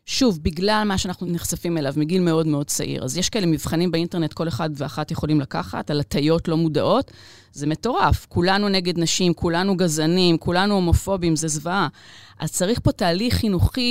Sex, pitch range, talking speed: female, 160-210 Hz, 175 wpm